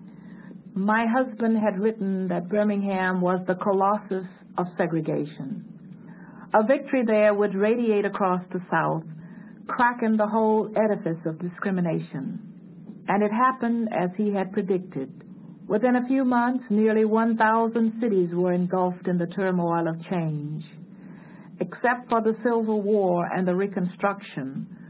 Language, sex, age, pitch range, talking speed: English, female, 60-79, 180-215 Hz, 130 wpm